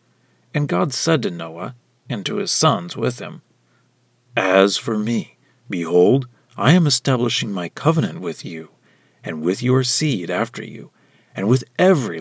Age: 50-69